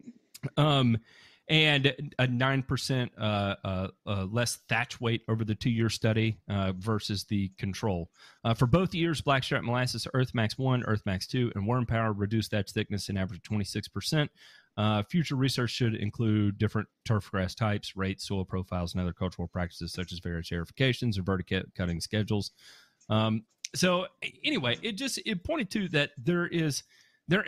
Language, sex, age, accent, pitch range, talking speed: English, male, 30-49, American, 100-140 Hz, 170 wpm